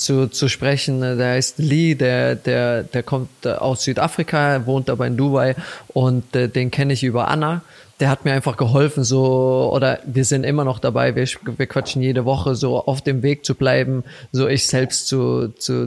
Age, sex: 20-39, male